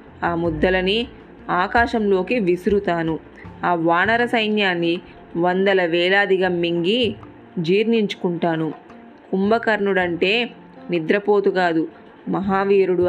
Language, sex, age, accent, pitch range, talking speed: Telugu, female, 20-39, native, 170-210 Hz, 65 wpm